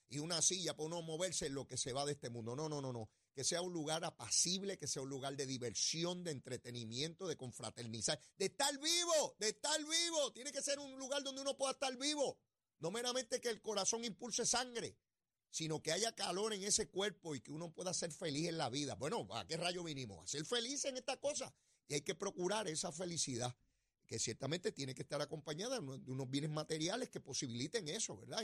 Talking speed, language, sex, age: 215 wpm, Spanish, male, 30-49